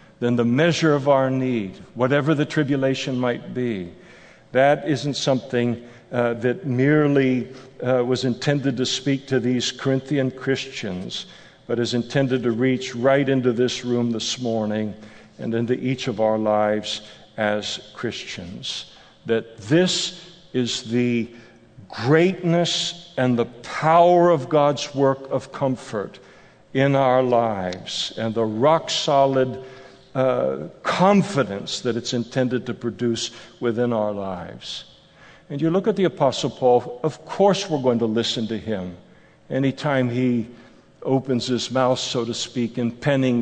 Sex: male